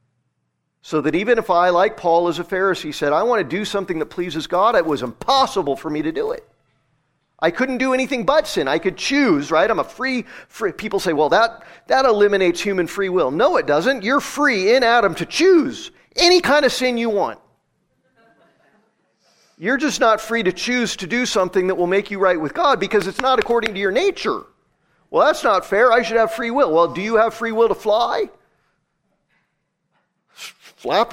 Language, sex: English, male